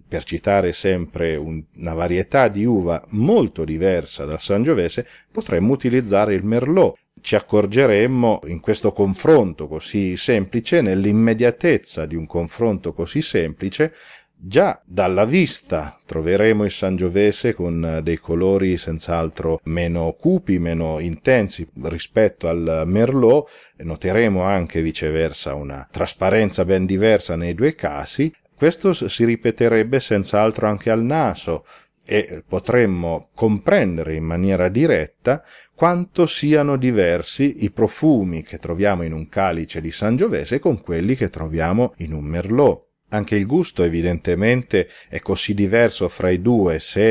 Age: 40-59